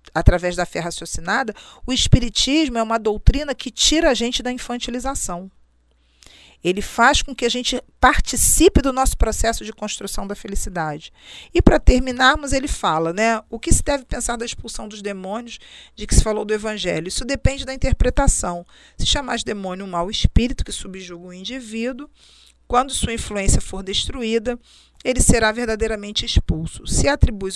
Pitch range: 185-235 Hz